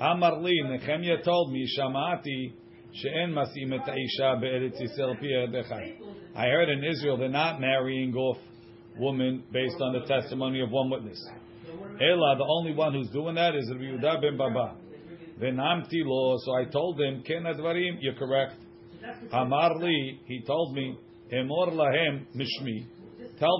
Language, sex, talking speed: English, male, 100 wpm